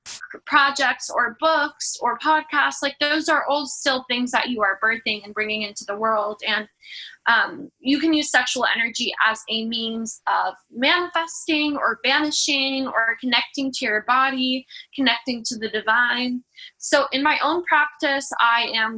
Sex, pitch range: female, 225-285 Hz